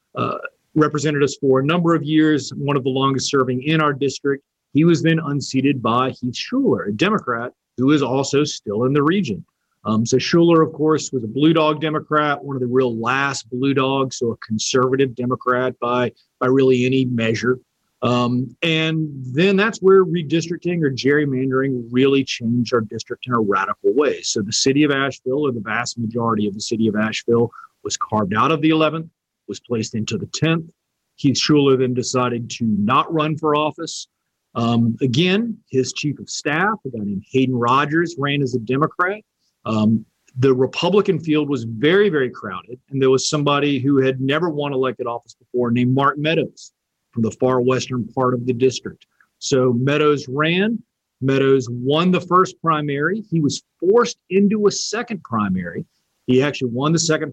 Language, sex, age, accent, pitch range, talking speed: English, male, 40-59, American, 125-155 Hz, 180 wpm